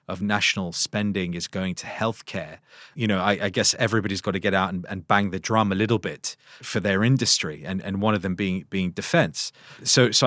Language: English